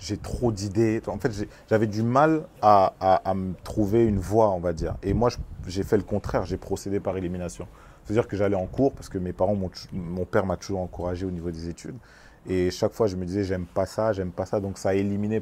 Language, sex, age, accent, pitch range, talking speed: French, male, 30-49, French, 90-110 Hz, 245 wpm